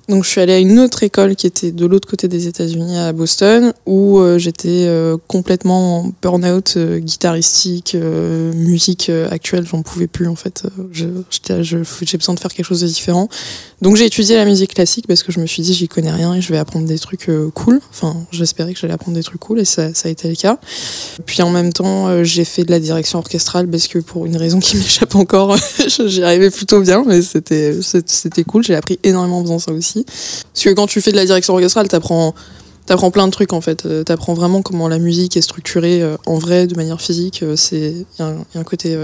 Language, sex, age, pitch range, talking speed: French, female, 20-39, 165-185 Hz, 235 wpm